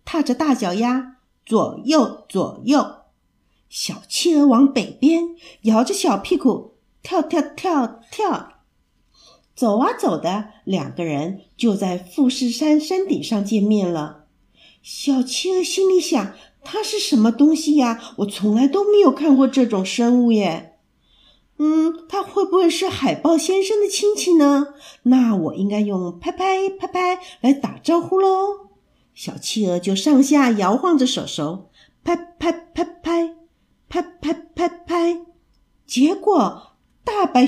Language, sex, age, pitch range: Chinese, female, 50-69, 240-360 Hz